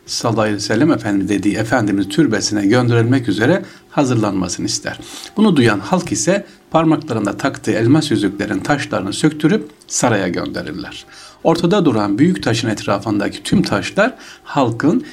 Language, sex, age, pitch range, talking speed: Turkish, male, 60-79, 105-155 Hz, 125 wpm